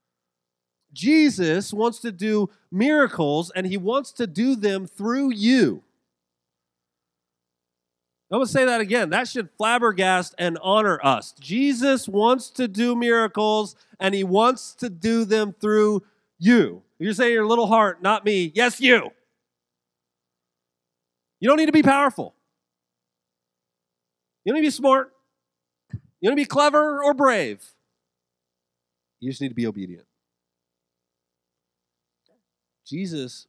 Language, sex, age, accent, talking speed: English, male, 40-59, American, 135 wpm